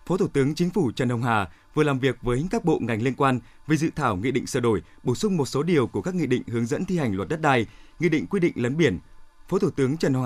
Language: Vietnamese